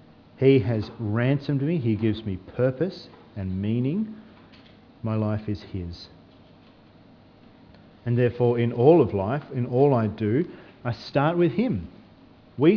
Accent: Australian